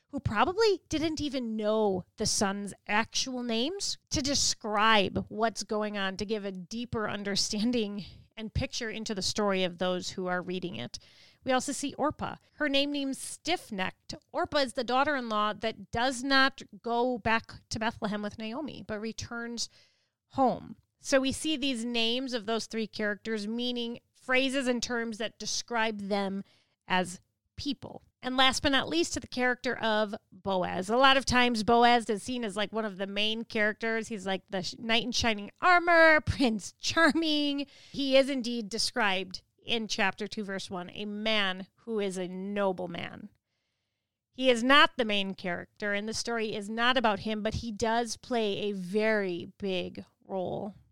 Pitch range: 205-250 Hz